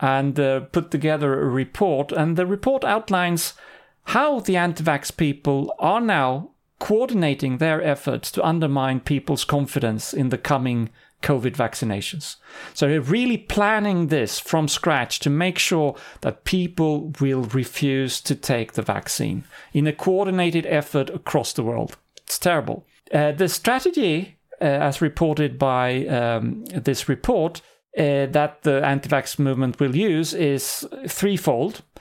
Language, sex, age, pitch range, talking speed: English, male, 40-59, 135-175 Hz, 140 wpm